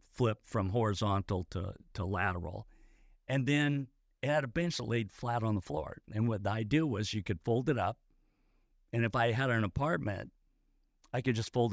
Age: 50-69